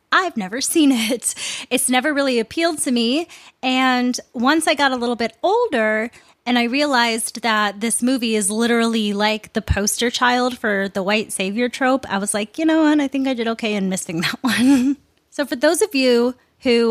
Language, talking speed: English, 200 wpm